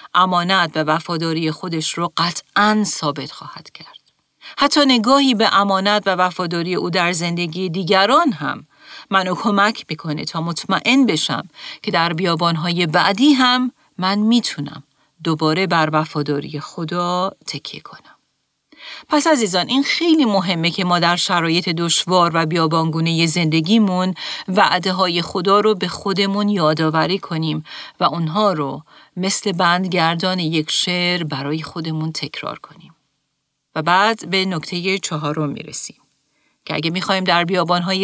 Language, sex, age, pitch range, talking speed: Persian, female, 40-59, 165-205 Hz, 130 wpm